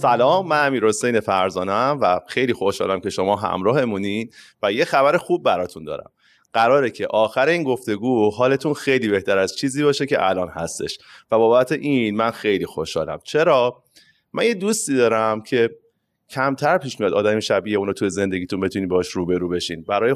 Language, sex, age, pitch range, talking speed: Persian, male, 30-49, 100-135 Hz, 165 wpm